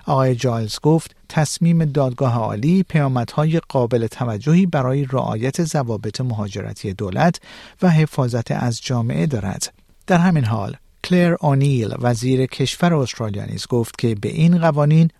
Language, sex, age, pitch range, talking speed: Persian, male, 50-69, 115-155 Hz, 125 wpm